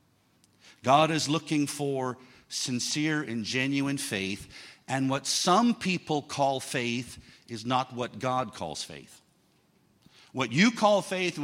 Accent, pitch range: American, 130-210 Hz